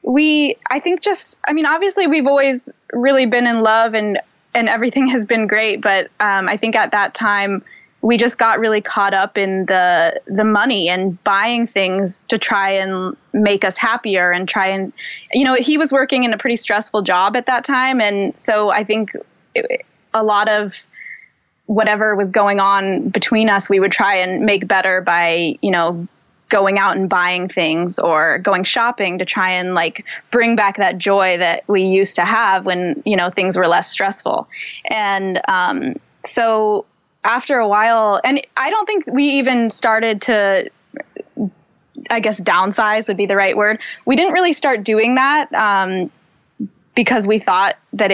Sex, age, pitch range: female, 20-39, 190-240 Hz